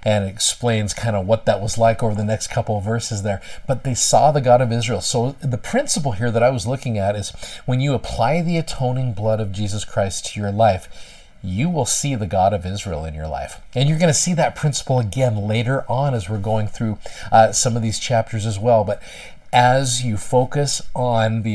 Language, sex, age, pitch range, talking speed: English, male, 40-59, 100-125 Hz, 225 wpm